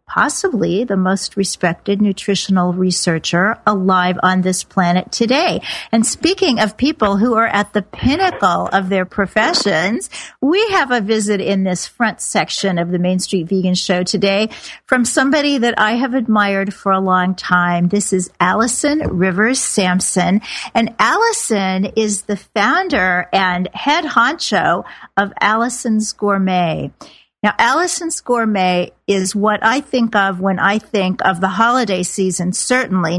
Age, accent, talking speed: 50-69, American, 145 wpm